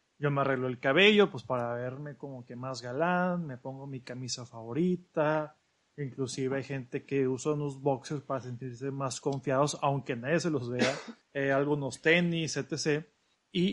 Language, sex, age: Spanish, male, 30-49